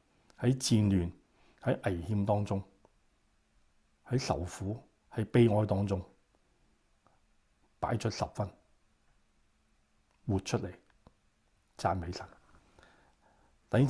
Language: Chinese